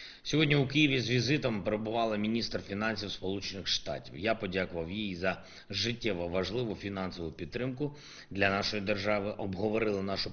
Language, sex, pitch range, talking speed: English, male, 95-125 Hz, 135 wpm